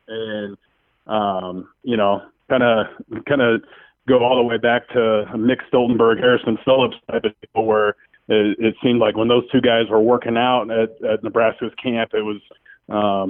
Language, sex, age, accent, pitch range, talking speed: English, male, 30-49, American, 105-120 Hz, 180 wpm